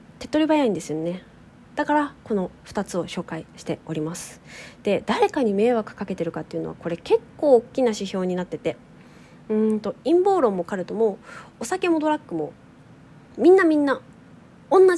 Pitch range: 180-270 Hz